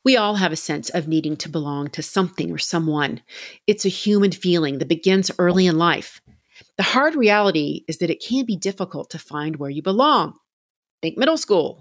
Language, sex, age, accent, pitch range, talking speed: English, female, 40-59, American, 155-210 Hz, 200 wpm